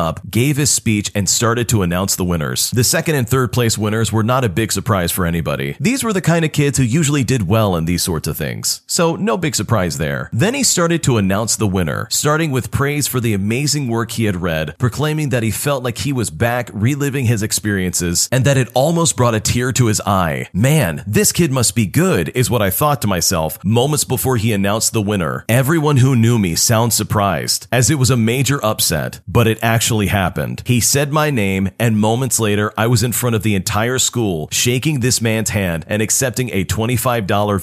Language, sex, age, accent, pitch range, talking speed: English, male, 40-59, American, 100-130 Hz, 220 wpm